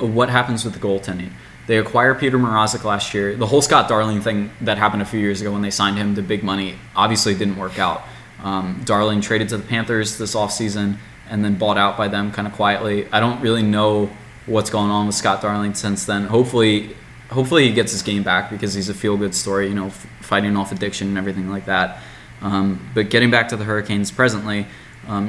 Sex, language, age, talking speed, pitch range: male, English, 20-39, 220 wpm, 100-110 Hz